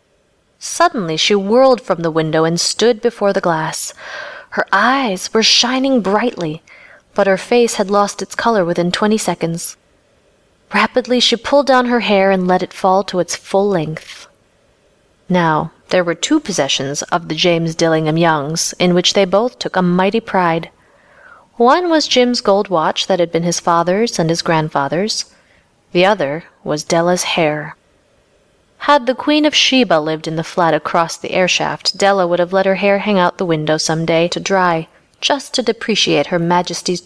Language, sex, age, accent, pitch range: Korean, female, 30-49, American, 170-225 Hz